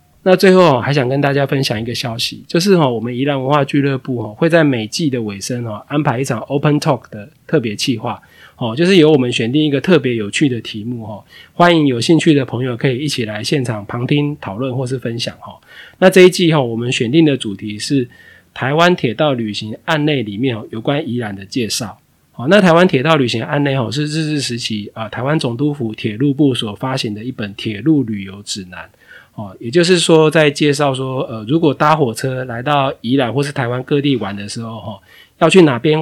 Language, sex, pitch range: Chinese, male, 115-150 Hz